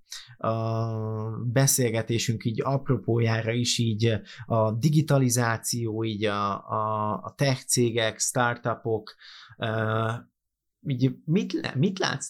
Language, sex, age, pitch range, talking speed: Hungarian, male, 30-49, 110-135 Hz, 95 wpm